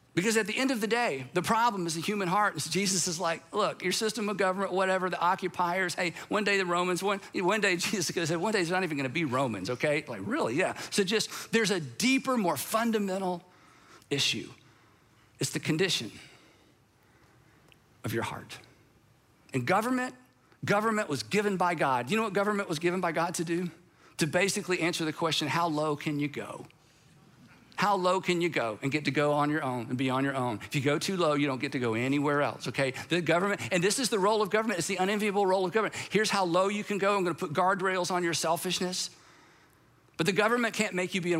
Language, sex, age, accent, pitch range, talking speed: English, male, 50-69, American, 155-200 Hz, 230 wpm